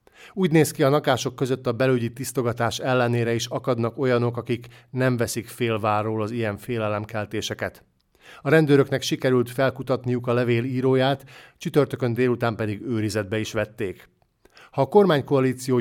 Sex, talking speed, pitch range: male, 135 wpm, 115-130 Hz